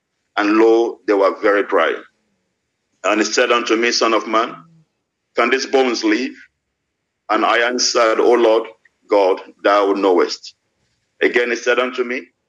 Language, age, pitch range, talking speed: English, 50-69, 120-160 Hz, 150 wpm